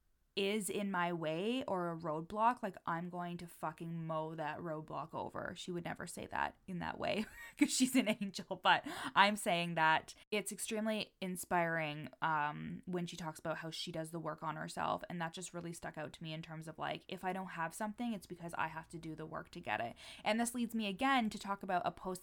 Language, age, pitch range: English, 20-39, 165-195 Hz